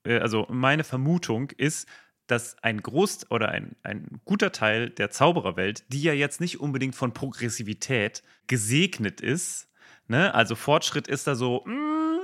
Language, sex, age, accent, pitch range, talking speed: German, male, 30-49, German, 115-160 Hz, 145 wpm